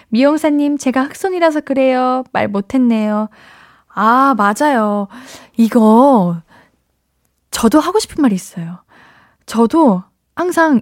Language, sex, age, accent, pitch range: Korean, female, 20-39, native, 215-300 Hz